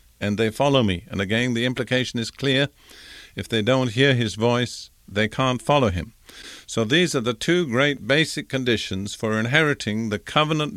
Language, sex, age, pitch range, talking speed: English, male, 50-69, 110-140 Hz, 180 wpm